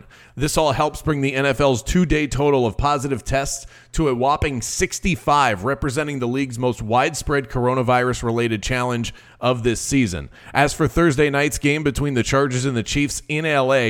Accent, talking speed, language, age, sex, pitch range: American, 165 wpm, English, 30-49, male, 120-145 Hz